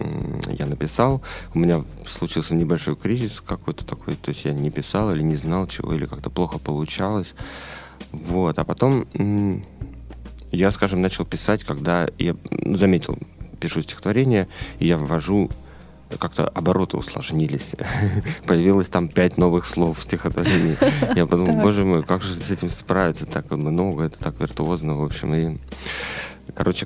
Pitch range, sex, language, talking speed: 80-100 Hz, male, Russian, 145 wpm